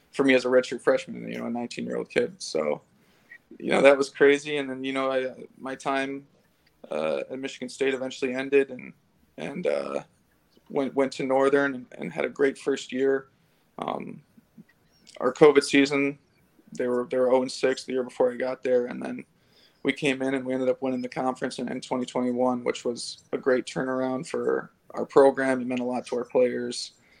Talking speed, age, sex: 205 wpm, 20-39, male